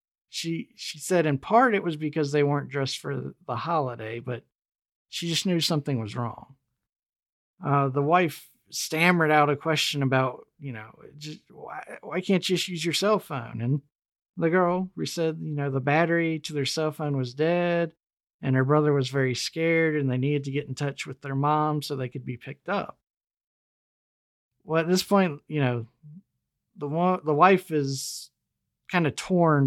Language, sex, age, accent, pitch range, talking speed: English, male, 40-59, American, 130-165 Hz, 180 wpm